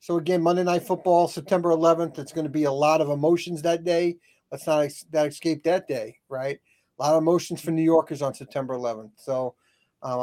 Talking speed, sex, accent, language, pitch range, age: 210 wpm, male, American, English, 135-165 Hz, 40-59